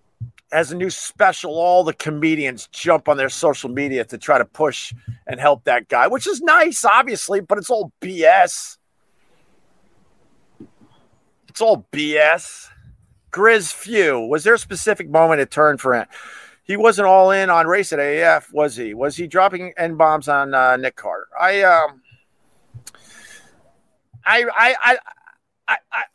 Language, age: English, 50-69